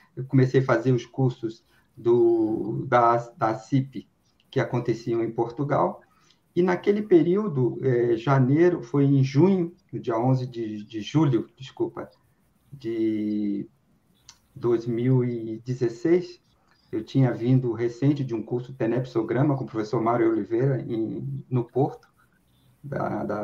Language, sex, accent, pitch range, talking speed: Portuguese, male, Brazilian, 125-165 Hz, 125 wpm